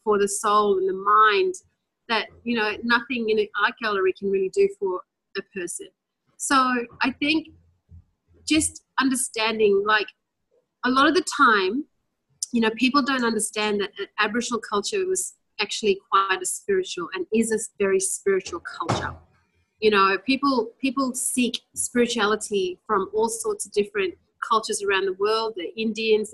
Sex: female